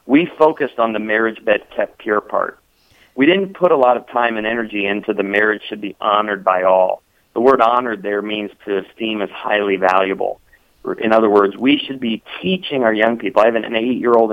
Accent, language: American, English